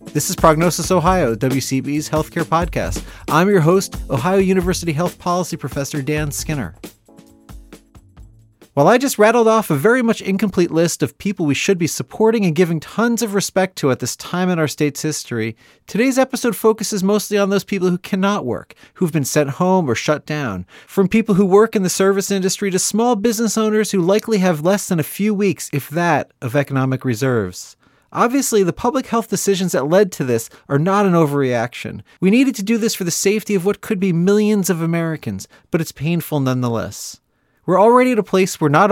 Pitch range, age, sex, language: 140-200 Hz, 30-49, male, English